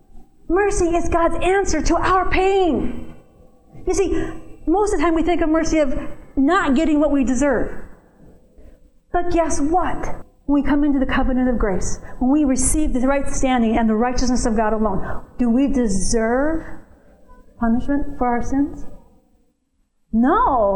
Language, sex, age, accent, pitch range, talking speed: English, female, 40-59, American, 235-300 Hz, 155 wpm